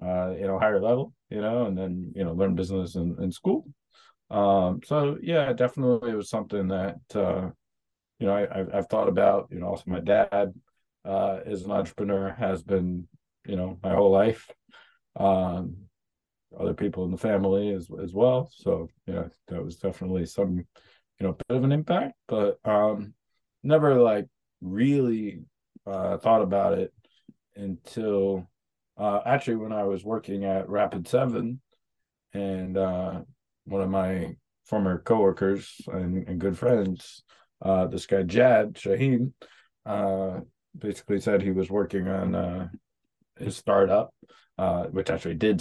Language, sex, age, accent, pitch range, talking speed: English, male, 20-39, American, 95-110 Hz, 155 wpm